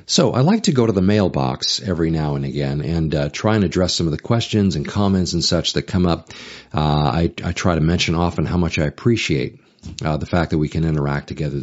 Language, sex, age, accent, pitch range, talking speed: English, male, 40-59, American, 80-105 Hz, 245 wpm